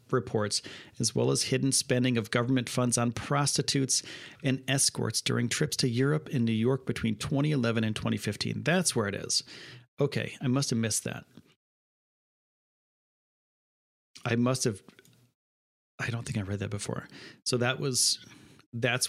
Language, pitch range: English, 110-135 Hz